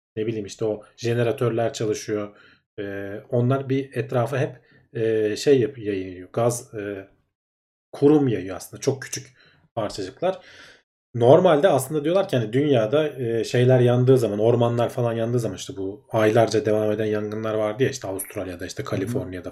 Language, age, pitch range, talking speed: Turkish, 40-59, 110-140 Hz, 150 wpm